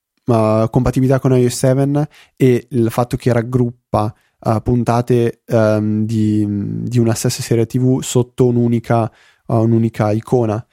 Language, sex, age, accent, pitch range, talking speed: Italian, male, 20-39, native, 110-130 Hz, 105 wpm